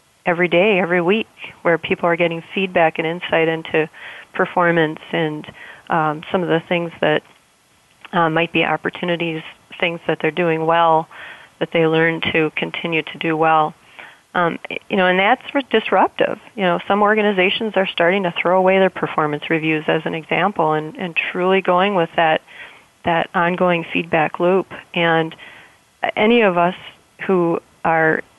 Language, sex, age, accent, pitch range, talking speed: English, female, 30-49, American, 165-185 Hz, 155 wpm